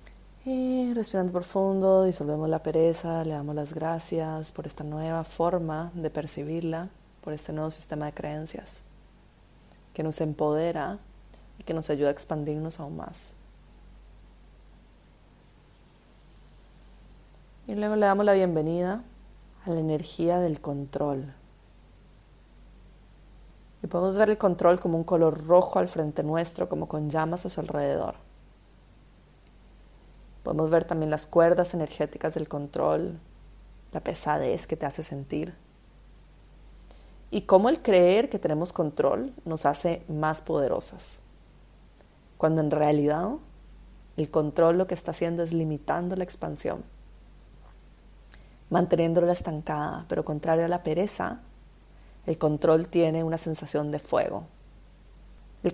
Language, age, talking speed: Spanish, 30-49, 125 wpm